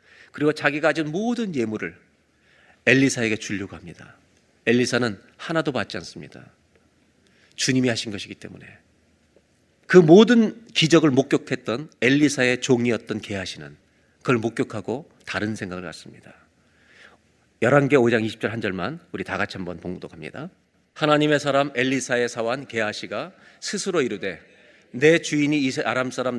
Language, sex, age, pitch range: Korean, male, 40-59, 110-145 Hz